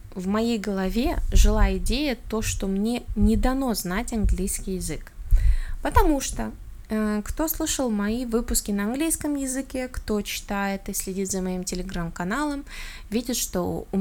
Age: 20-39